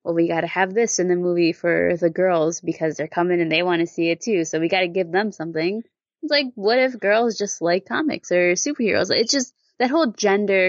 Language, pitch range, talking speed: English, 175-220 Hz, 235 wpm